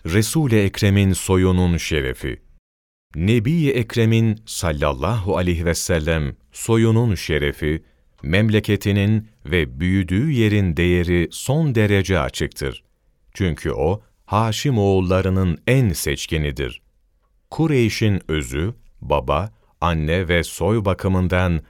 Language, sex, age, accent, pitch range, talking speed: Turkish, male, 40-59, native, 80-110 Hz, 90 wpm